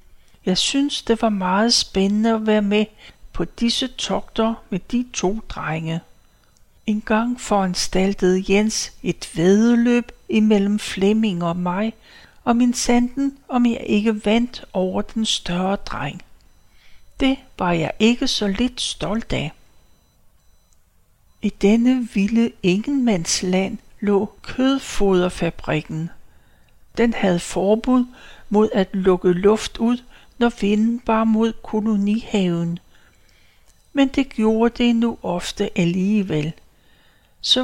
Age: 60-79